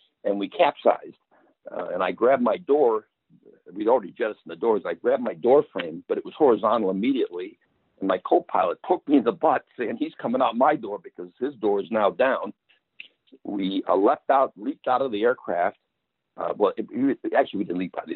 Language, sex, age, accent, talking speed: English, male, 60-79, American, 215 wpm